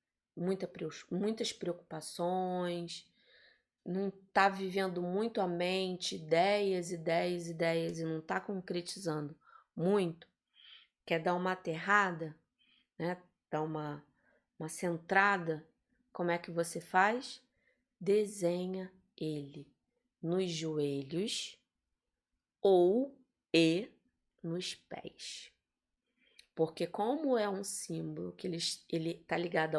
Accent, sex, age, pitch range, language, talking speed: Brazilian, female, 20-39, 165-205 Hz, Portuguese, 95 wpm